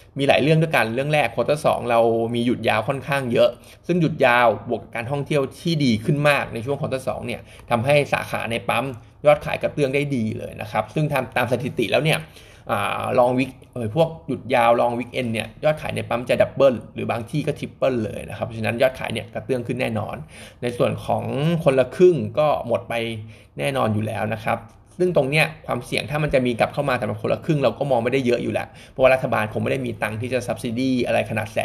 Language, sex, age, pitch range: Thai, male, 20-39, 110-140 Hz